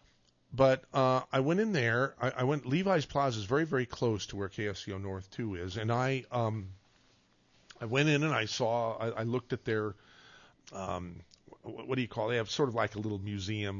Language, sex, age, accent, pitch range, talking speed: English, male, 50-69, American, 100-145 Hz, 220 wpm